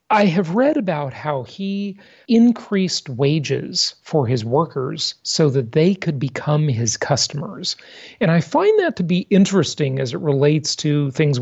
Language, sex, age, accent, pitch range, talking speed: English, male, 40-59, American, 135-180 Hz, 160 wpm